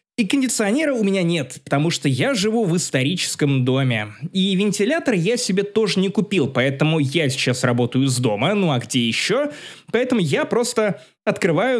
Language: Russian